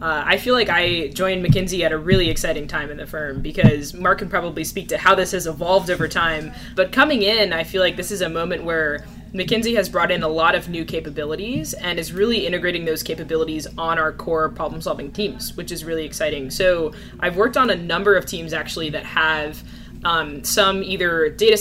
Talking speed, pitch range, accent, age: 215 wpm, 160-195 Hz, American, 20-39